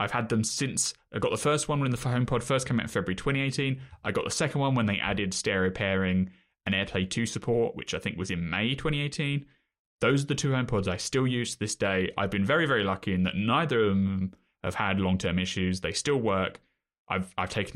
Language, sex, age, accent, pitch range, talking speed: English, male, 20-39, British, 95-130 Hz, 245 wpm